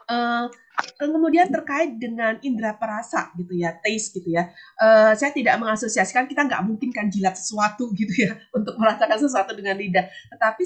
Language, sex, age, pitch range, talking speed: Indonesian, female, 30-49, 195-270 Hz, 165 wpm